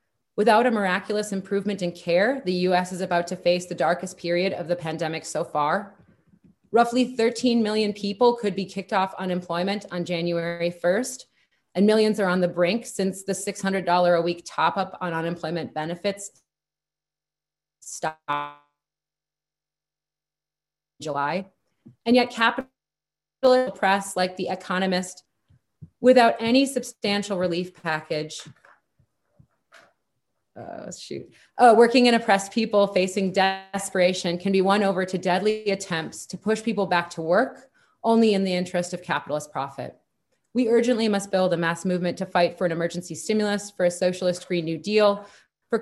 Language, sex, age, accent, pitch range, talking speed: English, female, 30-49, American, 170-210 Hz, 145 wpm